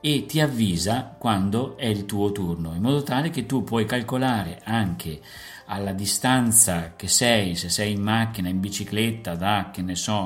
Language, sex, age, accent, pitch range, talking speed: Italian, male, 50-69, native, 100-120 Hz, 175 wpm